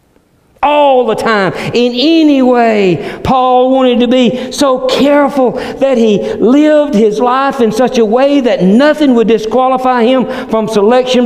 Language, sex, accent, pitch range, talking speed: English, male, American, 150-225 Hz, 150 wpm